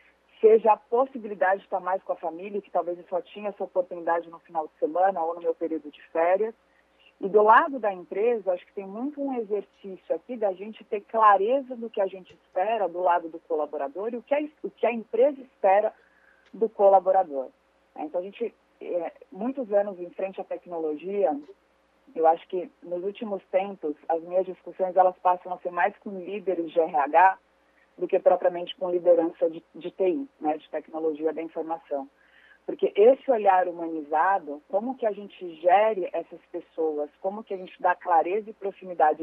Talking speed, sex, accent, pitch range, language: 180 wpm, female, Brazilian, 170-210 Hz, Portuguese